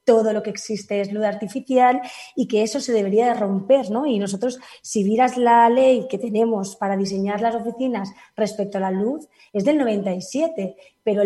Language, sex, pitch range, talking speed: Spanish, female, 210-260 Hz, 185 wpm